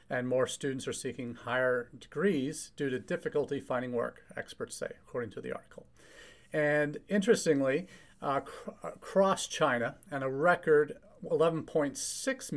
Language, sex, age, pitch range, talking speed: English, male, 40-59, 125-155 Hz, 130 wpm